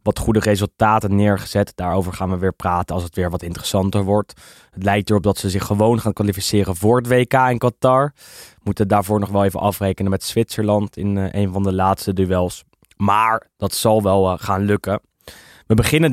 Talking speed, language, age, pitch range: 195 wpm, English, 10-29, 100-125 Hz